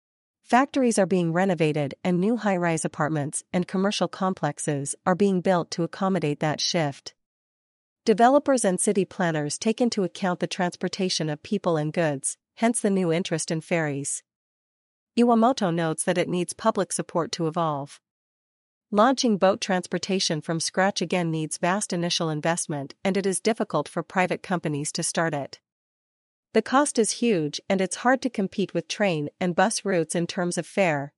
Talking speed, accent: 160 wpm, American